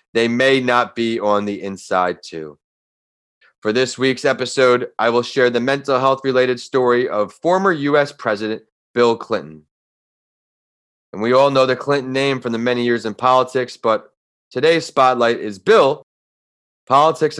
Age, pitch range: 30-49, 105-135 Hz